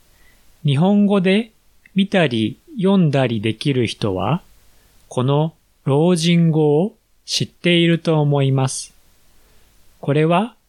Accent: native